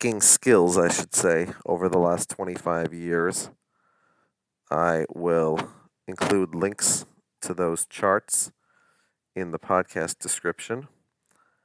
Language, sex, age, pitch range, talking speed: English, male, 30-49, 90-110 Hz, 105 wpm